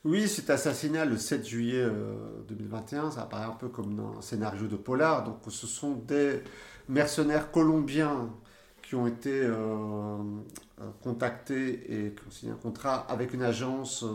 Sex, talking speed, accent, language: male, 155 wpm, French, French